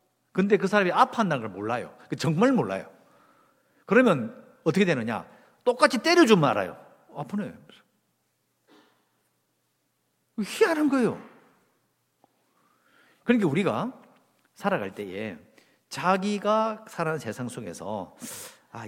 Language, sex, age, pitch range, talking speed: English, male, 50-69, 150-220 Hz, 85 wpm